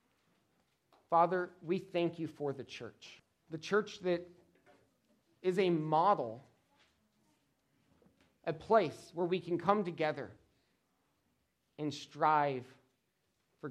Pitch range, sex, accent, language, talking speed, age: 120-165 Hz, male, American, English, 100 wpm, 40-59